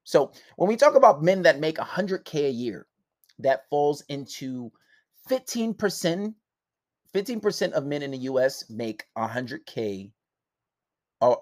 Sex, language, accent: male, English, American